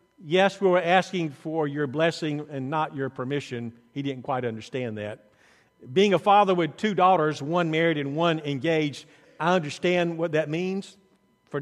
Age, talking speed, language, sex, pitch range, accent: 50-69, 170 wpm, English, male, 150-195 Hz, American